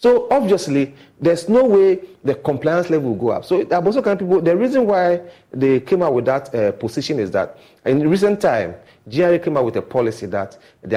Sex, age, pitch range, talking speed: male, 40-59, 120-185 Hz, 215 wpm